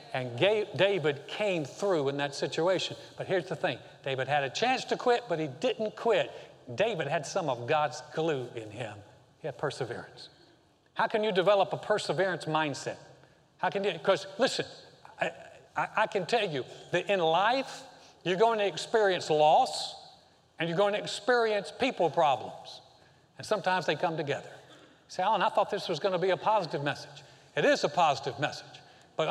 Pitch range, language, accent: 160-220 Hz, English, American